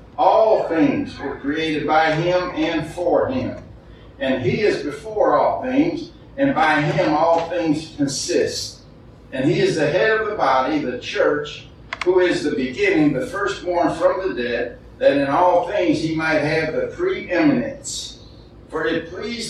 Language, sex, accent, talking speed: English, male, American, 160 wpm